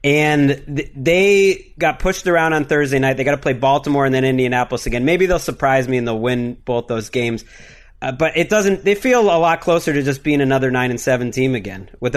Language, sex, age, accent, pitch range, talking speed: English, male, 30-49, American, 130-165 Hz, 225 wpm